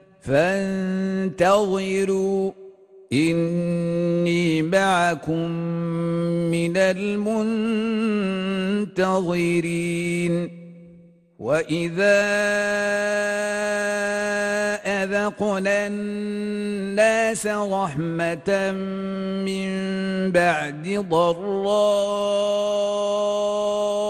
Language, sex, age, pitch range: Arabic, male, 50-69, 175-205 Hz